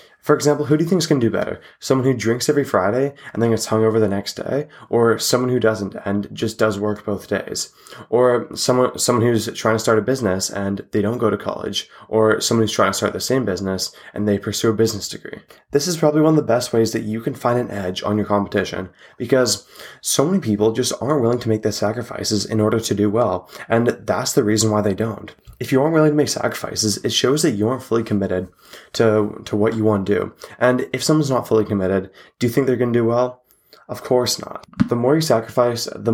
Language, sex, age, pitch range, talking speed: English, male, 20-39, 105-125 Hz, 240 wpm